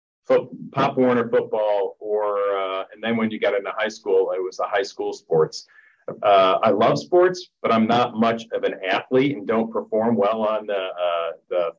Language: English